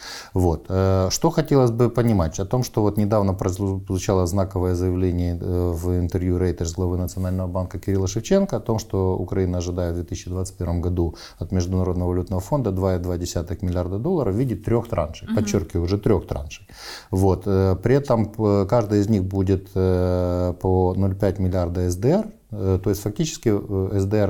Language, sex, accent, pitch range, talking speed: Ukrainian, male, native, 90-110 Hz, 145 wpm